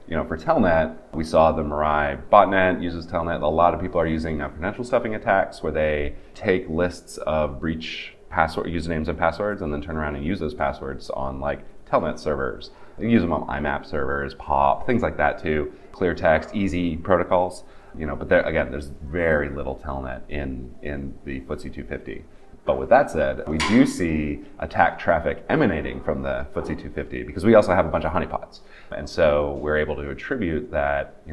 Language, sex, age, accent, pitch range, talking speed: English, male, 30-49, American, 75-90 Hz, 200 wpm